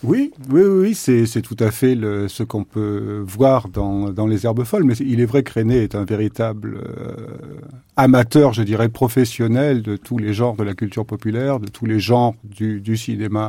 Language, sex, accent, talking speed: French, male, French, 210 wpm